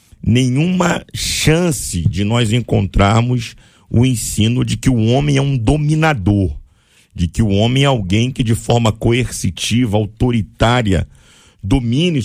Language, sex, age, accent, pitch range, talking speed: Portuguese, male, 50-69, Brazilian, 110-145 Hz, 125 wpm